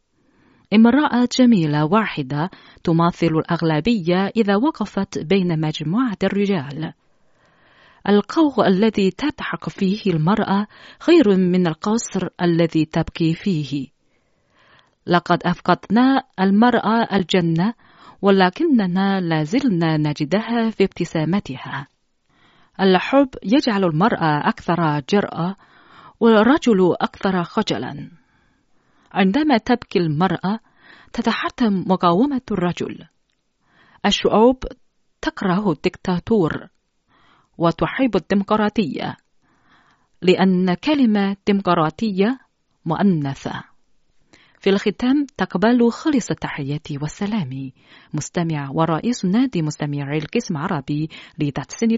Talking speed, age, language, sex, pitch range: 75 wpm, 40-59, Arabic, female, 165-220 Hz